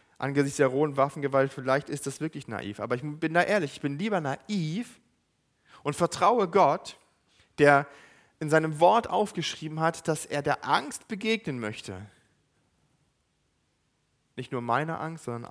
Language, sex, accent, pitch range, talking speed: German, male, German, 145-180 Hz, 145 wpm